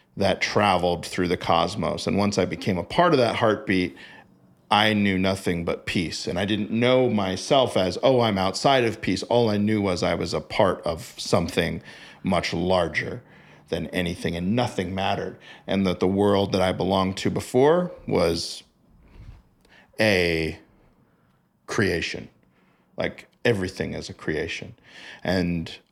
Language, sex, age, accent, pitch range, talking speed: English, male, 40-59, American, 90-110 Hz, 150 wpm